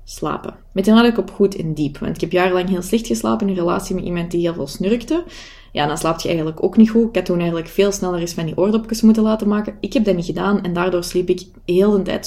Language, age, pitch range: Dutch, 20-39, 170-215 Hz